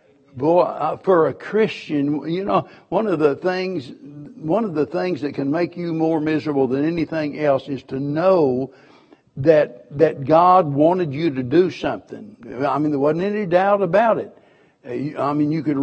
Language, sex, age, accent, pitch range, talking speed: English, male, 60-79, American, 140-175 Hz, 175 wpm